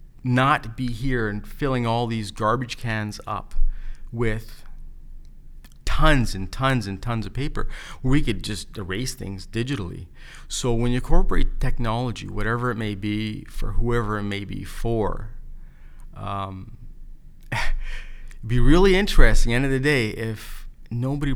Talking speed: 140 wpm